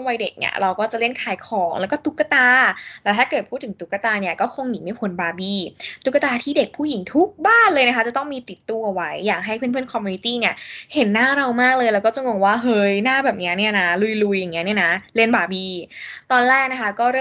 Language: Thai